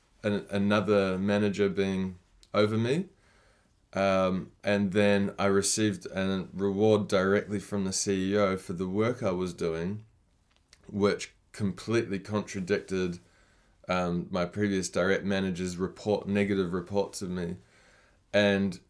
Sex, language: male, English